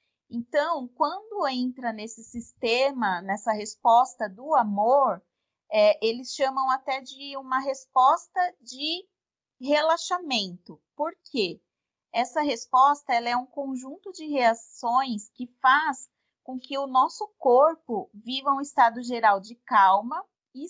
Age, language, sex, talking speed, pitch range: 30-49, Portuguese, female, 120 wpm, 230-290 Hz